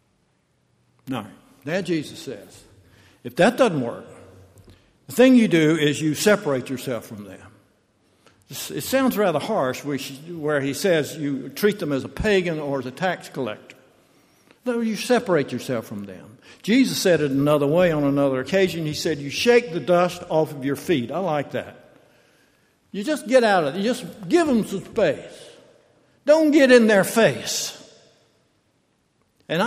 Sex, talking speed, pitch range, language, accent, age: male, 165 wpm, 150-220 Hz, English, American, 60-79